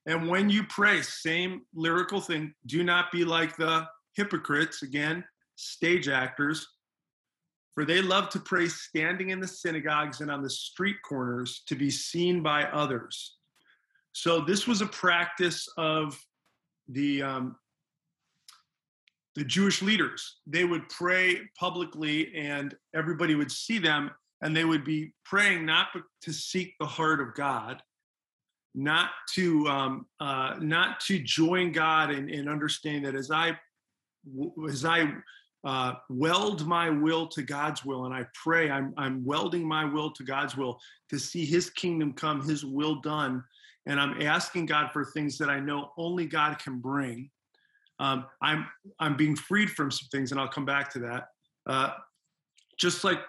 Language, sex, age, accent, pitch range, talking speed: English, male, 40-59, American, 140-170 Hz, 155 wpm